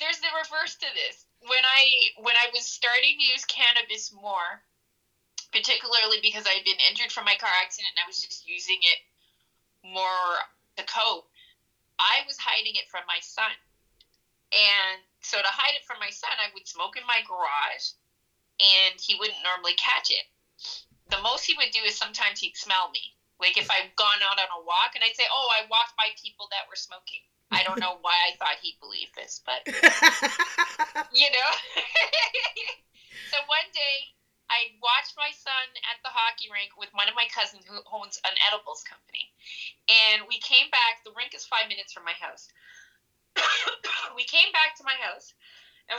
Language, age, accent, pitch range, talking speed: English, 30-49, American, 195-295 Hz, 185 wpm